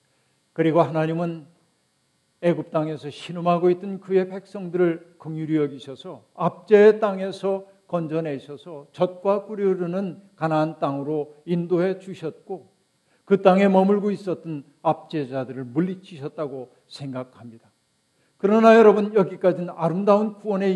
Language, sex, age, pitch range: Korean, male, 50-69, 150-190 Hz